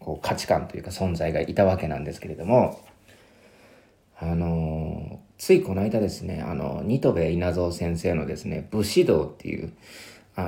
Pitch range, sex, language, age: 85-115 Hz, male, Japanese, 40-59